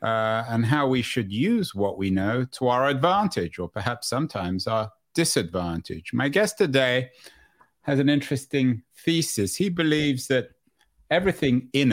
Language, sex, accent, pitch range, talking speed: English, male, British, 115-150 Hz, 145 wpm